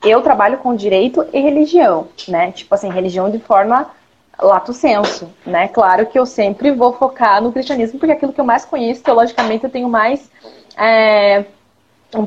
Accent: Brazilian